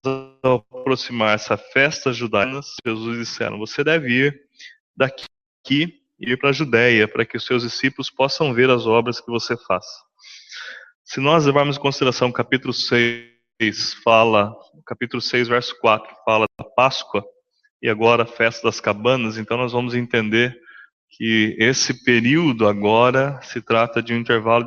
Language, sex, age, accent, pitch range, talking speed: English, male, 20-39, Brazilian, 115-140 Hz, 155 wpm